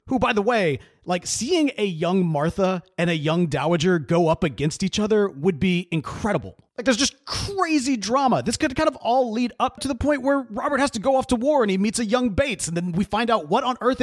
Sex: male